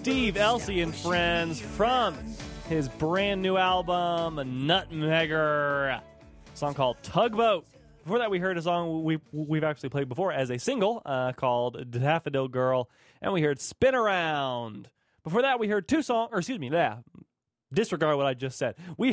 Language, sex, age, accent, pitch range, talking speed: English, male, 20-39, American, 135-185 Hz, 165 wpm